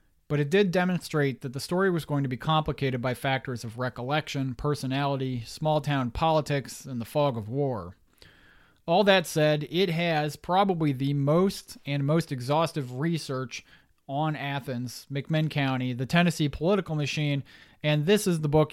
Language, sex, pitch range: English, male, 130-155 Hz